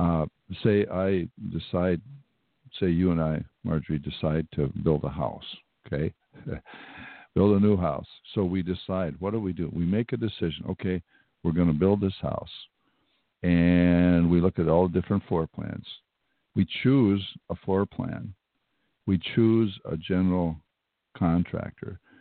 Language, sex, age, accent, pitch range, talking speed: English, male, 60-79, American, 85-105 Hz, 150 wpm